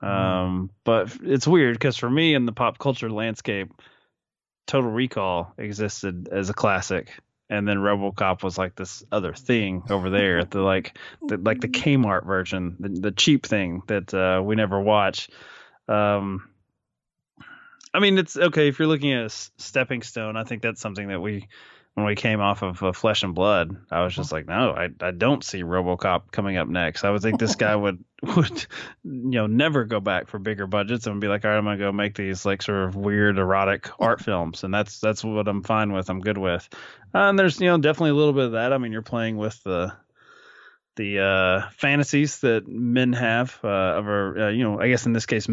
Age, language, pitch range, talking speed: 20-39, English, 95-120 Hz, 215 wpm